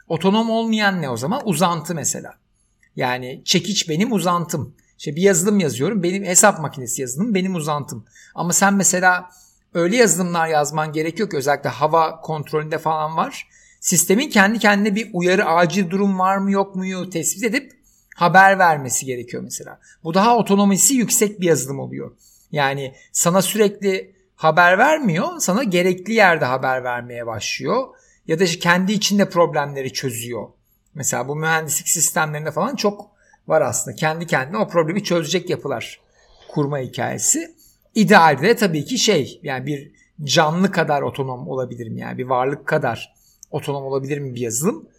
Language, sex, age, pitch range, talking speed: Turkish, male, 60-79, 145-195 Hz, 150 wpm